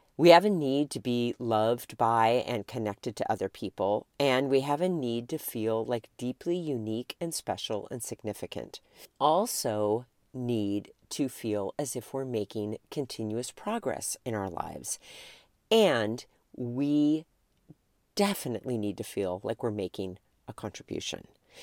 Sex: female